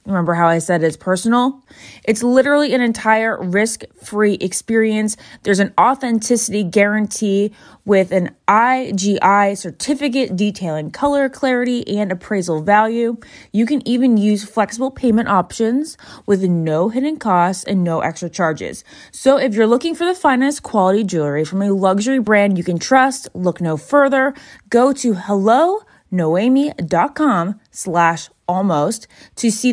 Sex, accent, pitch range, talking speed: female, American, 175-240 Hz, 135 wpm